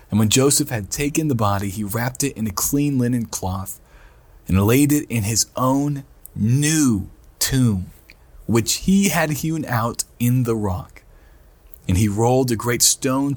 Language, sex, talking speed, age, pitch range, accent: English, male, 165 wpm, 40-59, 100-125 Hz, American